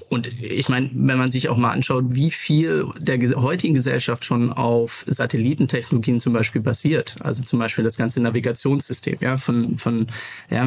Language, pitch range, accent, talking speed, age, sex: German, 120-135 Hz, German, 170 wpm, 20-39, male